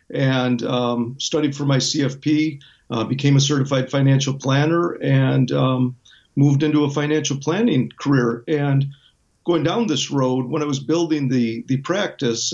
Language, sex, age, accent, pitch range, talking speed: English, male, 50-69, American, 125-150 Hz, 155 wpm